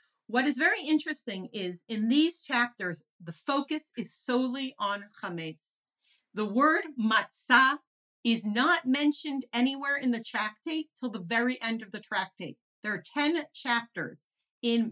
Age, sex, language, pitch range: 40-59, female, English, 215-295 Hz